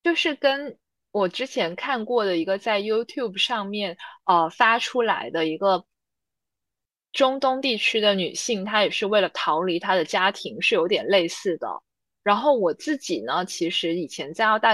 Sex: female